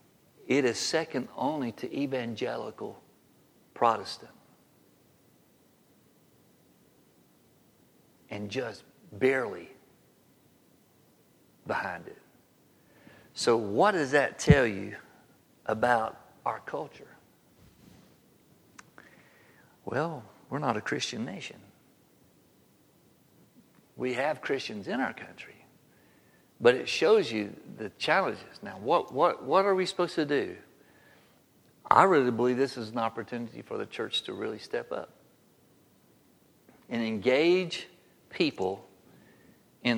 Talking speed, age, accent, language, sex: 100 wpm, 60-79, American, English, male